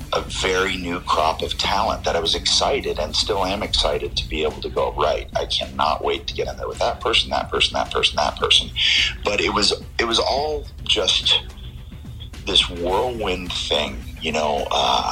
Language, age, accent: English, 40-59, American